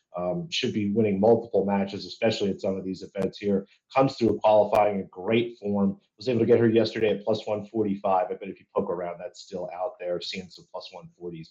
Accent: American